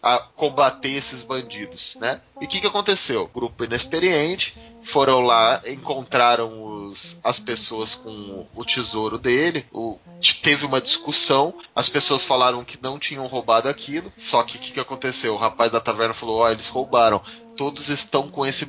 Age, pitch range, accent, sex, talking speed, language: 20-39, 115-145 Hz, Brazilian, male, 150 wpm, Portuguese